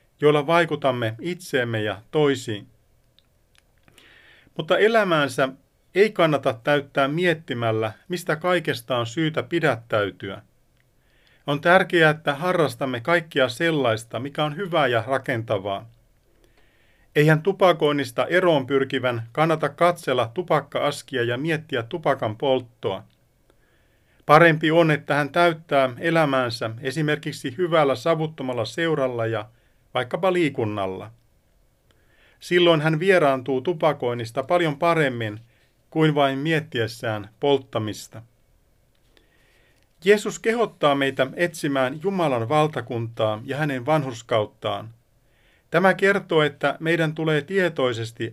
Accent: native